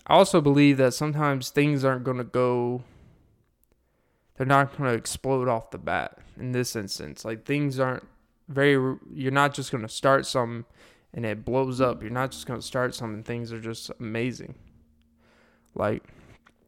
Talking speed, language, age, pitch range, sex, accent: 175 wpm, English, 20-39, 120-145 Hz, male, American